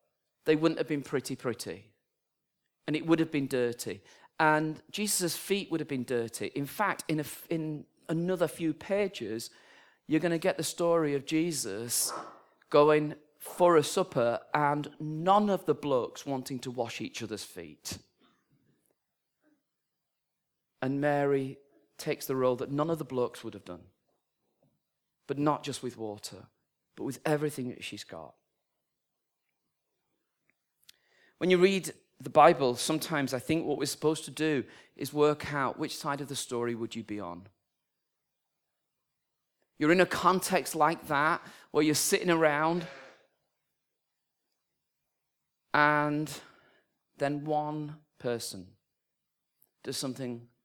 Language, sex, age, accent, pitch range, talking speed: English, male, 40-59, British, 130-160 Hz, 135 wpm